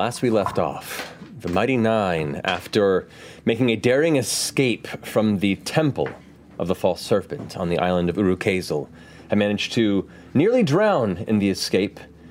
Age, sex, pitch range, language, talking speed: 30-49, male, 85-115 Hz, English, 160 wpm